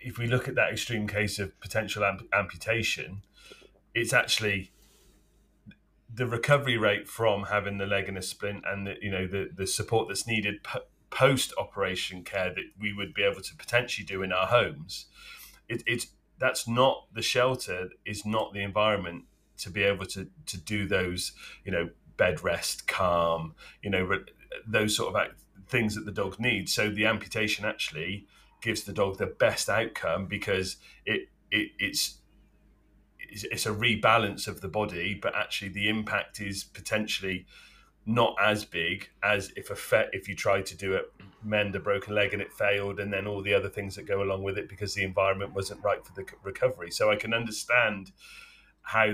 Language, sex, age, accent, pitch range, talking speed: English, male, 30-49, British, 95-110 Hz, 175 wpm